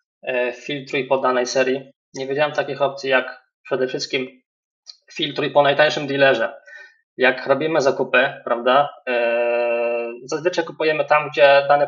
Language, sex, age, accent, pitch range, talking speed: Polish, male, 20-39, native, 135-175 Hz, 120 wpm